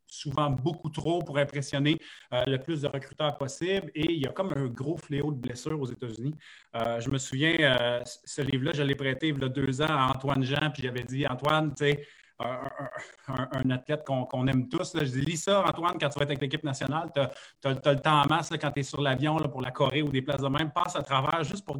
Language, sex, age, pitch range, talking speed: French, male, 30-49, 135-155 Hz, 260 wpm